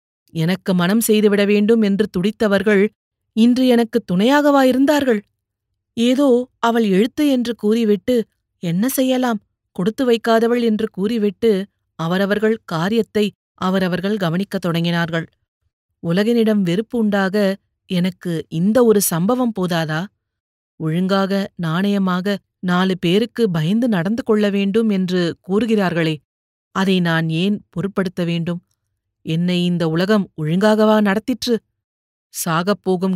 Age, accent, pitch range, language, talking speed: 30-49, native, 165-215 Hz, Tamil, 100 wpm